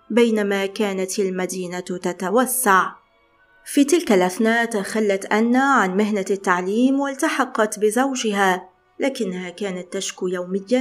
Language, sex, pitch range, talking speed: Arabic, female, 195-255 Hz, 100 wpm